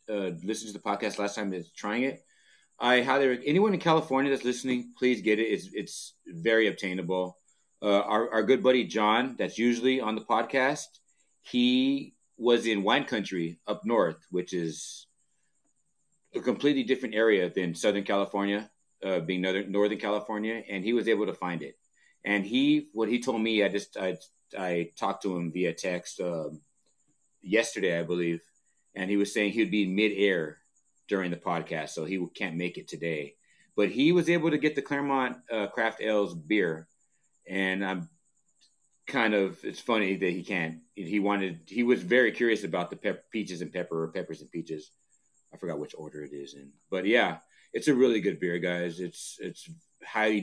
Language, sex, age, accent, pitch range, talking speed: English, male, 30-49, American, 95-130 Hz, 185 wpm